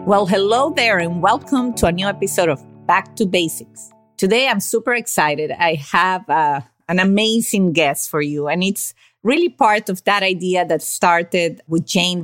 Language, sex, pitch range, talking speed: English, female, 165-205 Hz, 175 wpm